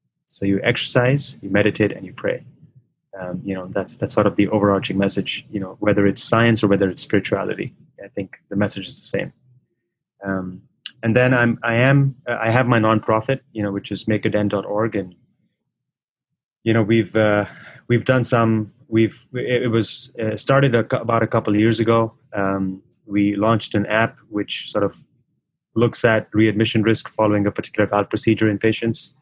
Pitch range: 100-115 Hz